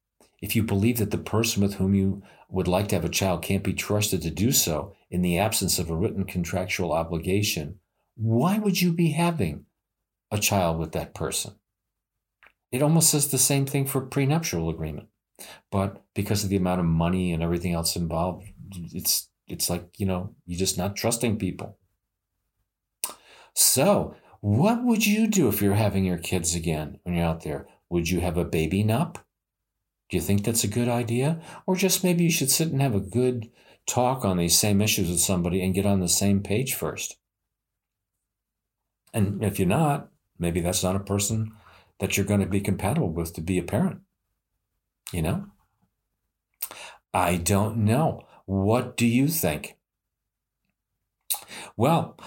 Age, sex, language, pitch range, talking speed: 50-69, male, English, 90-120 Hz, 175 wpm